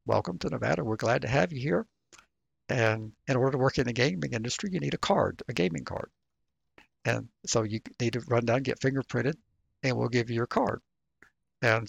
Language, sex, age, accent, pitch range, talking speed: English, male, 60-79, American, 110-140 Hz, 205 wpm